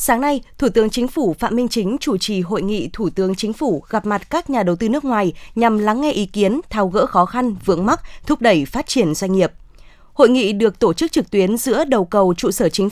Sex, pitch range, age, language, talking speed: female, 190-250 Hz, 20-39, Vietnamese, 255 wpm